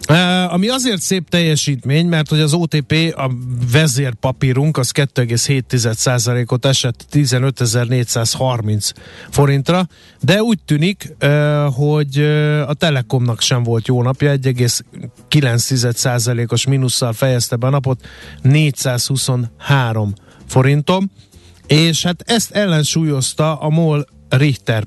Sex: male